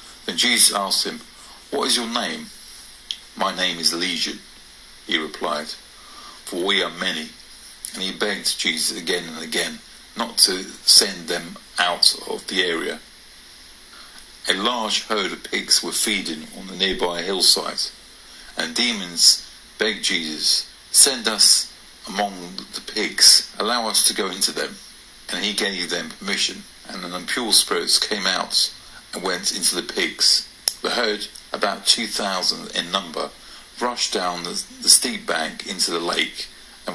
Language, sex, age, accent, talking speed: English, male, 50-69, British, 150 wpm